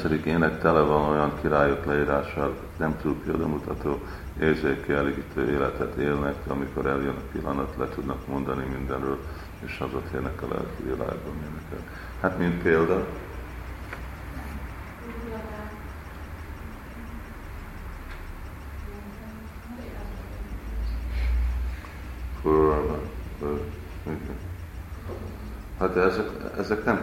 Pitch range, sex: 70-85 Hz, male